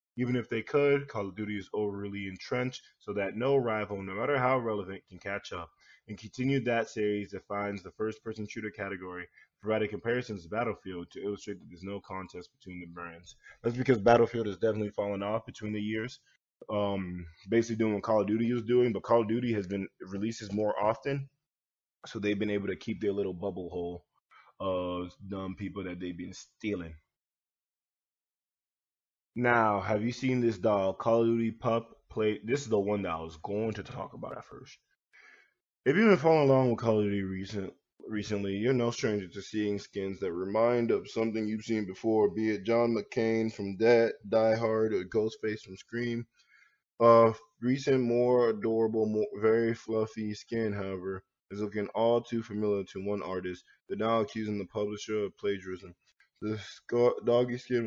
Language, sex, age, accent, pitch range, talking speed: English, male, 20-39, American, 100-115 Hz, 180 wpm